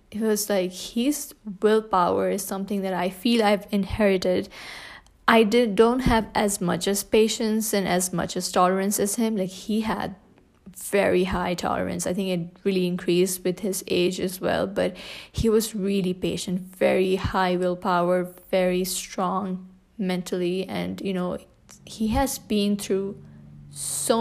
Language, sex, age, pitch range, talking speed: English, female, 20-39, 185-215 Hz, 155 wpm